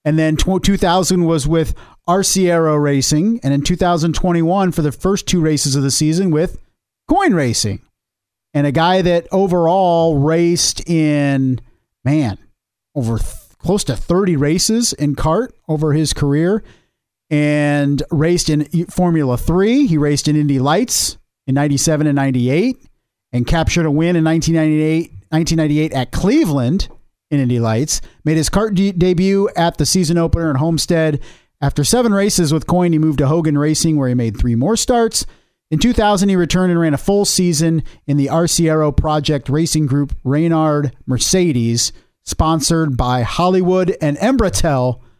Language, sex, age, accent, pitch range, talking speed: English, male, 40-59, American, 140-175 Hz, 155 wpm